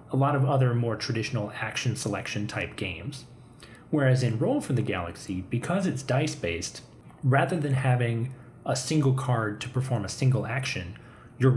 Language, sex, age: English, male, 30-49